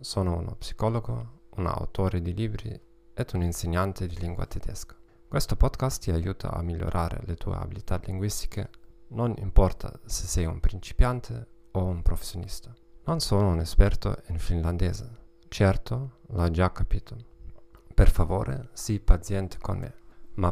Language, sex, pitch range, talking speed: Italian, male, 85-115 Hz, 145 wpm